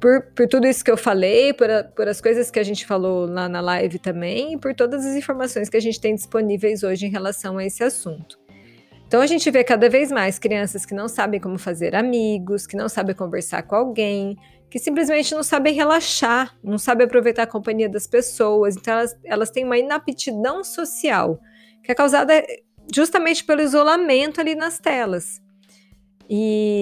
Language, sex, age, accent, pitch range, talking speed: Portuguese, female, 20-39, Brazilian, 195-260 Hz, 190 wpm